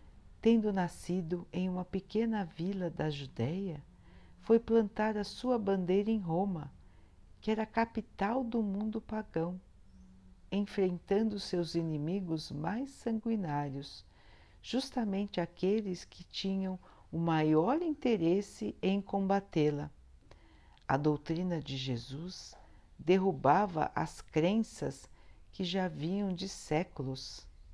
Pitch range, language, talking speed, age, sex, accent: 140-205 Hz, Portuguese, 105 wpm, 60-79, female, Brazilian